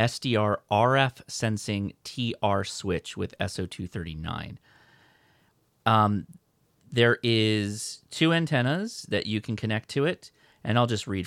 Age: 30-49